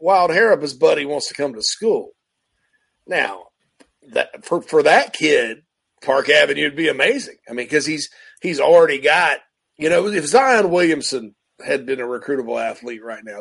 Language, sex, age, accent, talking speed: English, male, 40-59, American, 180 wpm